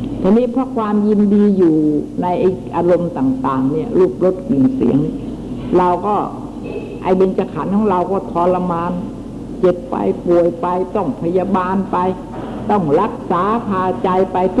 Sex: female